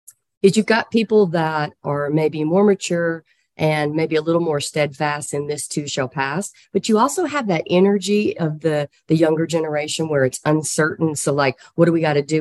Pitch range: 145-180 Hz